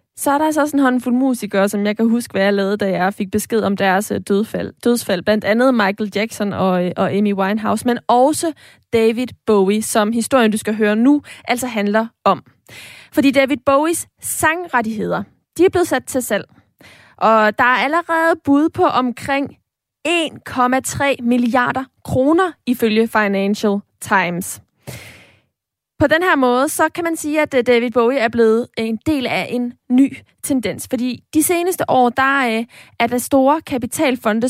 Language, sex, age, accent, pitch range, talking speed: Danish, female, 20-39, native, 220-280 Hz, 165 wpm